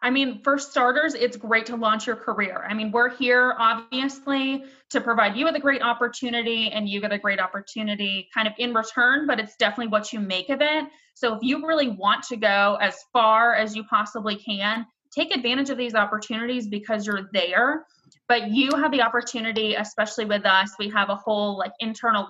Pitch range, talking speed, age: 210-260 Hz, 200 wpm, 20-39